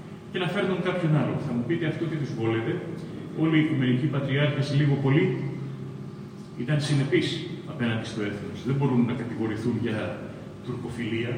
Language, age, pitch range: Greek, 30-49, 120-165 Hz